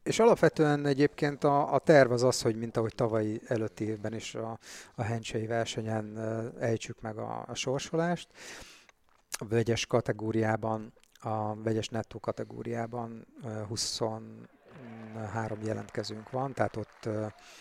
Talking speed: 125 wpm